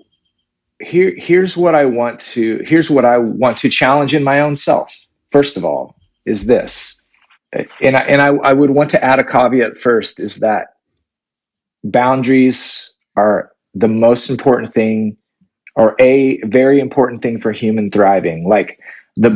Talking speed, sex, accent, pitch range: 160 wpm, male, American, 110-140 Hz